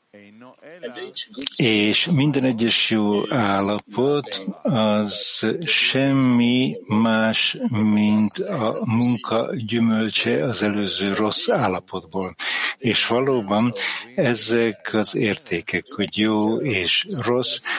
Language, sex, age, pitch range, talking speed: English, male, 60-79, 105-125 Hz, 85 wpm